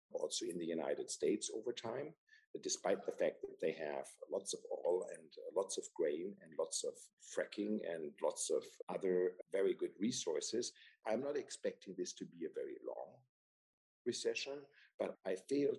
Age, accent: 50-69, German